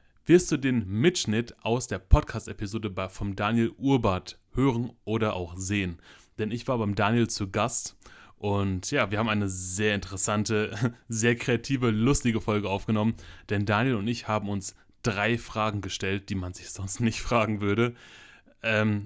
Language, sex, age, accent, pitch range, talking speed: German, male, 20-39, German, 100-115 Hz, 155 wpm